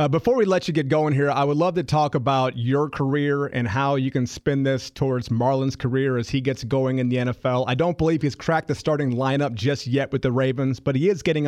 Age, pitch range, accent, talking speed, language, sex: 30-49, 135-160 Hz, American, 255 wpm, English, male